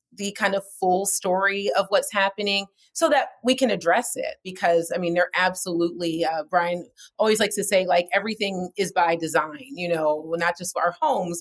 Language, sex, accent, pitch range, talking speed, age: English, female, American, 170-200 Hz, 190 wpm, 30-49